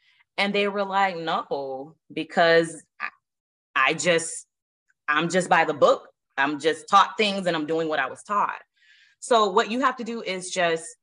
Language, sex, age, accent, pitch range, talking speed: English, female, 20-39, American, 170-250 Hz, 175 wpm